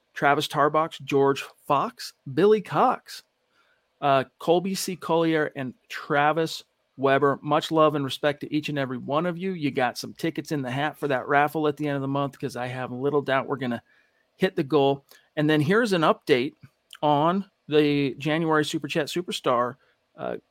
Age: 40-59